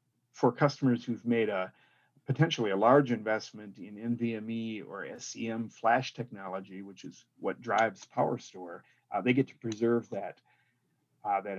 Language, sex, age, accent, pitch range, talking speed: English, male, 40-59, American, 115-135 Hz, 145 wpm